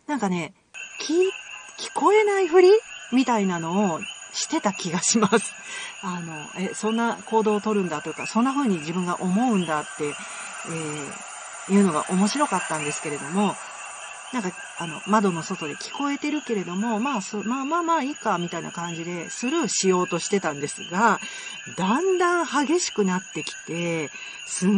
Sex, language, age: female, Japanese, 40-59